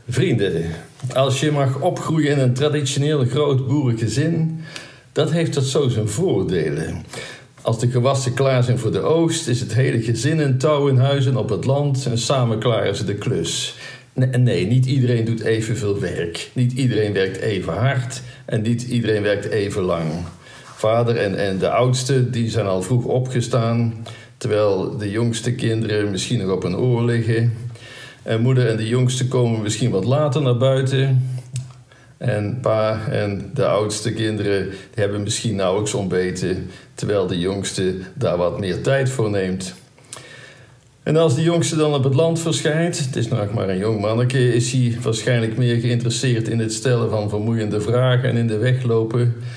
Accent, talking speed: Dutch, 170 wpm